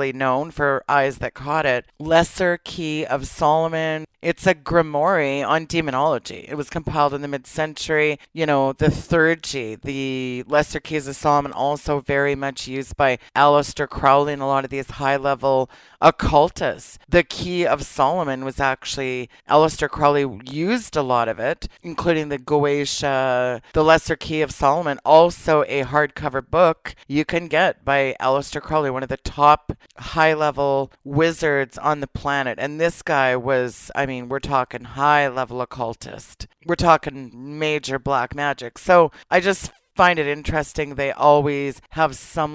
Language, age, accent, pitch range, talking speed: English, 40-59, American, 135-155 Hz, 155 wpm